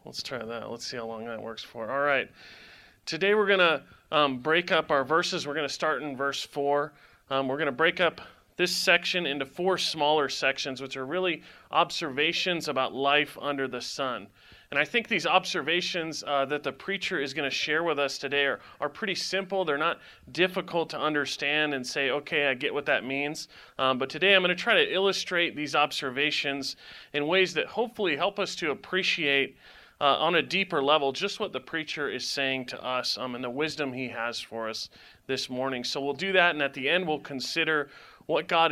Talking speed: 210 wpm